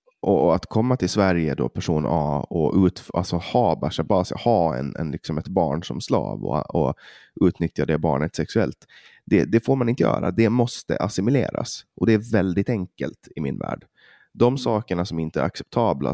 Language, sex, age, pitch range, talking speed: Swedish, male, 20-39, 85-110 Hz, 165 wpm